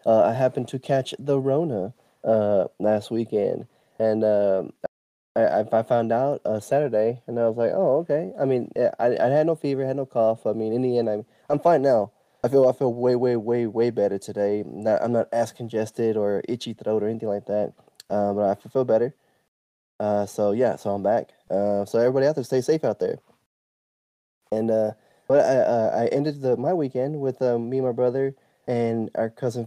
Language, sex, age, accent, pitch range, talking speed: English, male, 20-39, American, 110-130 Hz, 210 wpm